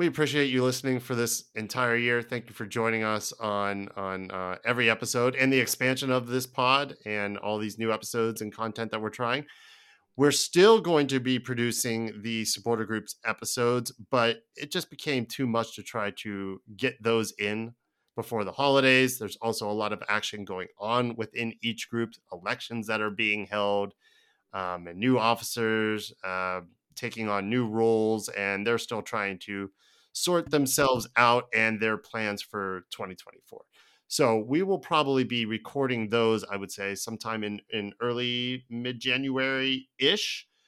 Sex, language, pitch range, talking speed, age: male, English, 105-125 Hz, 165 wpm, 30-49